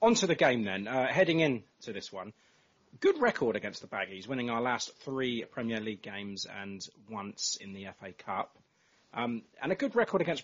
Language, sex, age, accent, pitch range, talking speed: English, male, 30-49, British, 100-130 Hz, 200 wpm